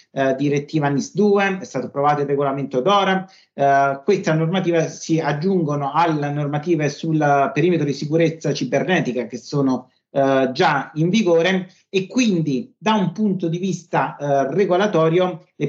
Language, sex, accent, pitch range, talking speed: Italian, male, native, 140-175 Hz, 145 wpm